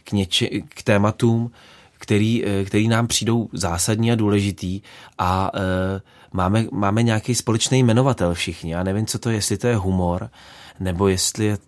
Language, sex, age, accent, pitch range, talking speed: Czech, male, 20-39, native, 95-110 Hz, 145 wpm